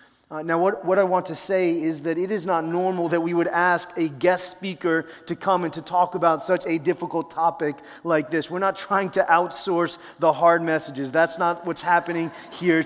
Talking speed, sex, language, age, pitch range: 215 wpm, male, English, 30-49, 155-180 Hz